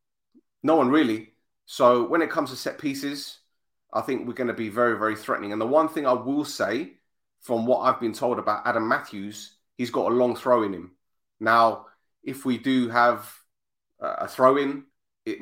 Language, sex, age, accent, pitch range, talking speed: English, male, 30-49, British, 110-145 Hz, 190 wpm